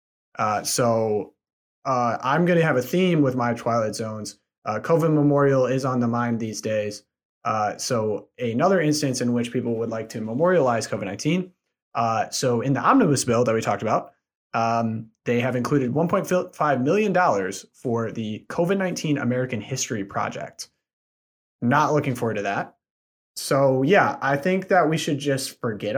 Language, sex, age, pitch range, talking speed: English, male, 30-49, 115-145 Hz, 160 wpm